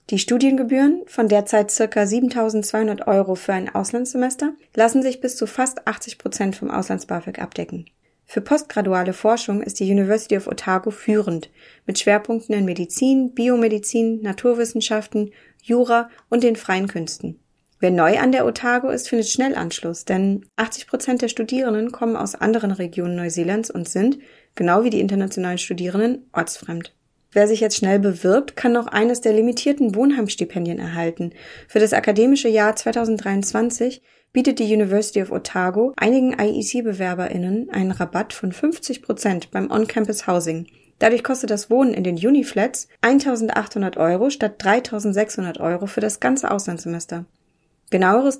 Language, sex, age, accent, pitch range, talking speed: German, female, 30-49, German, 195-240 Hz, 140 wpm